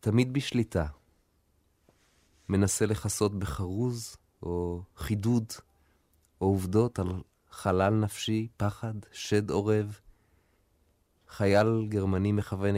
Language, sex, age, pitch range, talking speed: Hebrew, male, 30-49, 85-110 Hz, 85 wpm